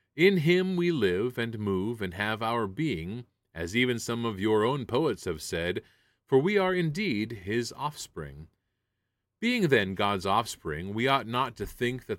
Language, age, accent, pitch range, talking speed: English, 30-49, American, 95-140 Hz, 170 wpm